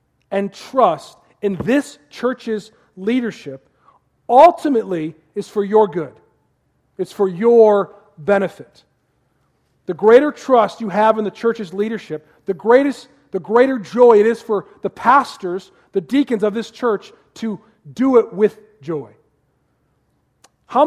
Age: 40-59